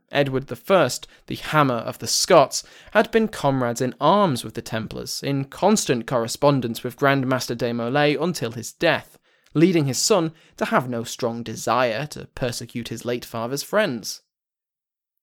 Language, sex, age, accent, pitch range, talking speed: English, male, 20-39, British, 120-155 Hz, 155 wpm